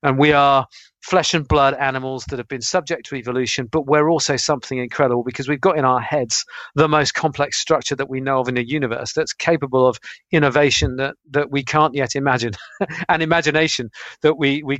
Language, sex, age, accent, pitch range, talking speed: English, male, 40-59, British, 130-165 Hz, 205 wpm